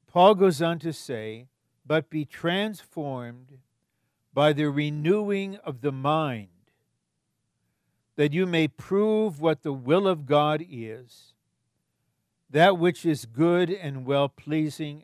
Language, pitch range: English, 130-175 Hz